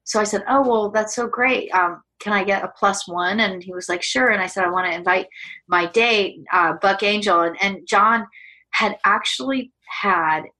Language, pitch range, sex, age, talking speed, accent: English, 180-245 Hz, female, 30-49, 215 wpm, American